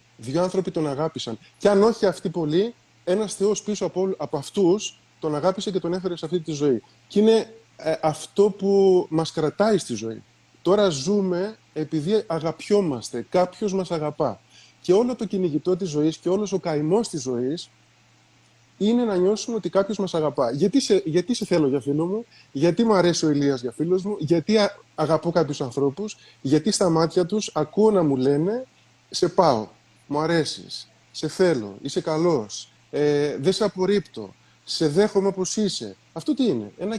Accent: native